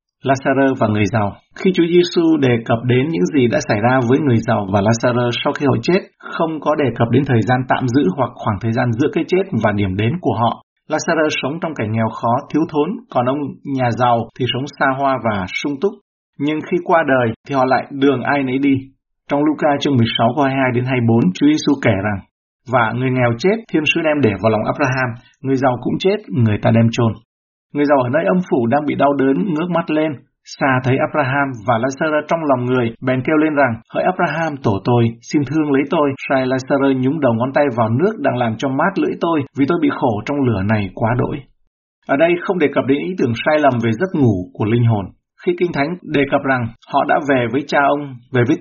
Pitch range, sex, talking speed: 120-150 Hz, male, 235 wpm